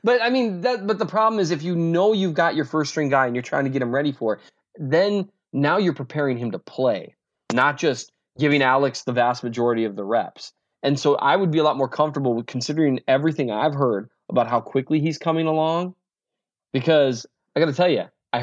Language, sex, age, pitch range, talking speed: English, male, 20-39, 115-160 Hz, 230 wpm